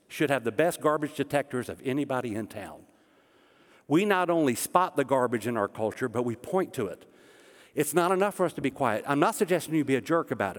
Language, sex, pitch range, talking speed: English, male, 130-180 Hz, 225 wpm